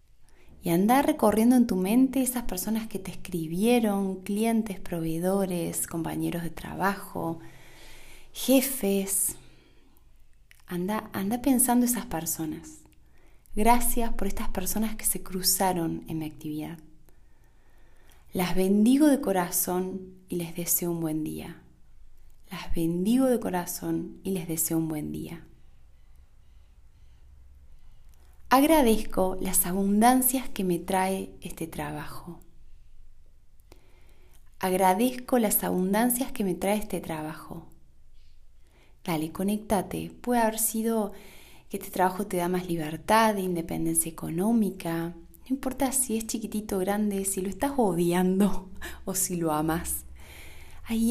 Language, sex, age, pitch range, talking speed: Spanish, female, 20-39, 155-215 Hz, 115 wpm